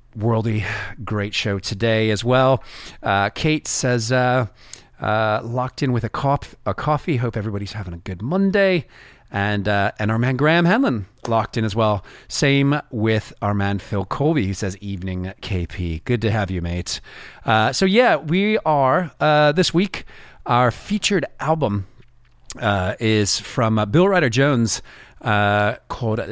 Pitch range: 100-135 Hz